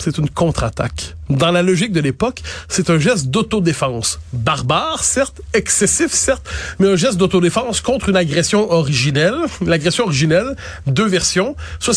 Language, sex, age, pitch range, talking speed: French, male, 30-49, 135-185 Hz, 145 wpm